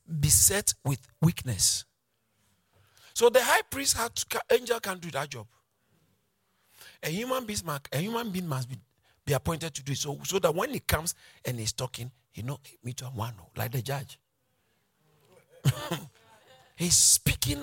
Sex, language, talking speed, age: male, English, 145 wpm, 50-69